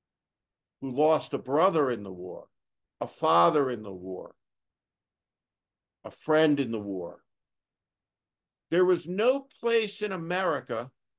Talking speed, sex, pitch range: 125 wpm, male, 145-210 Hz